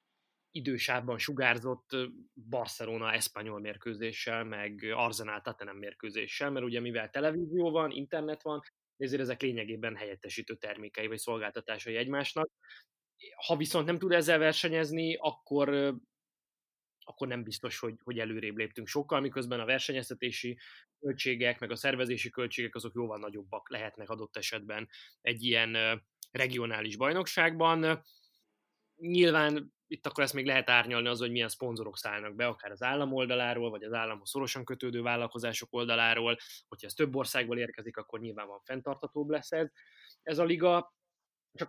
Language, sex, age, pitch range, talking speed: Hungarian, male, 20-39, 115-145 Hz, 140 wpm